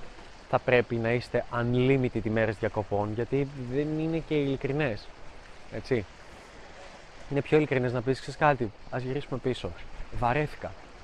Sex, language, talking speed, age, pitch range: male, Greek, 140 wpm, 20-39, 115-150 Hz